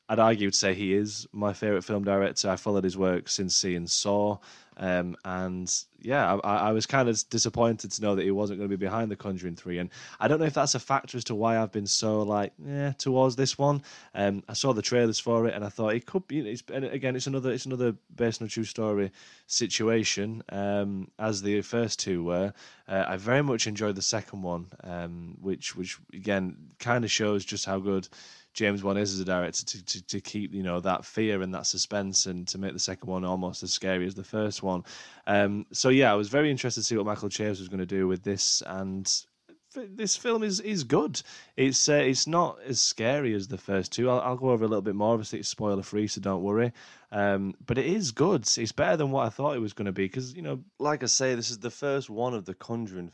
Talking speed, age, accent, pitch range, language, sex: 245 wpm, 20-39, British, 95-120 Hz, English, male